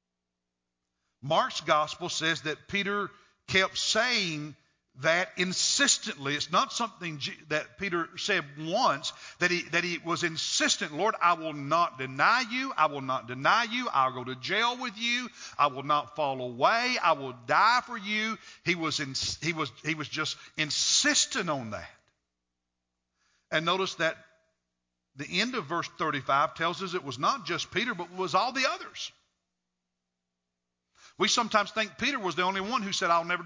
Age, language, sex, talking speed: 50-69, English, male, 165 wpm